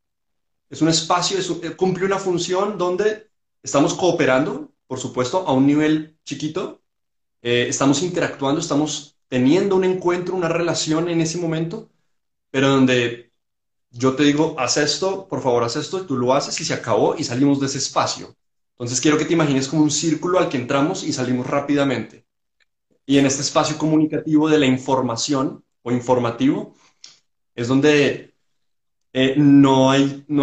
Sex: male